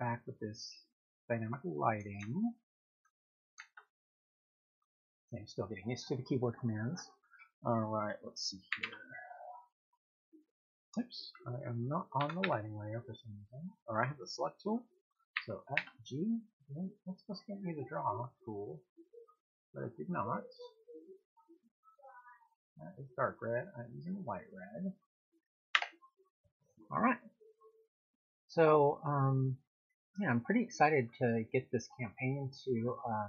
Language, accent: English, American